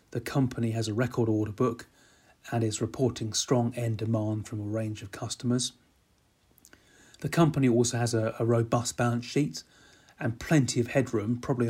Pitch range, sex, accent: 110-125 Hz, male, British